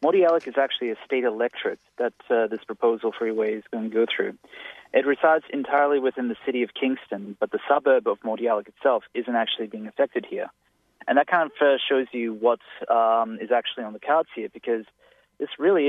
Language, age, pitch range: English, 30-49, 115-145 Hz